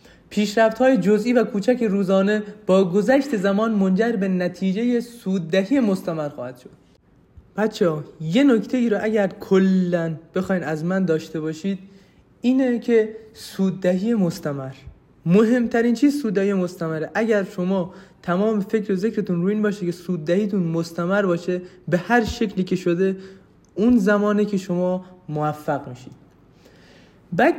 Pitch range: 175-225 Hz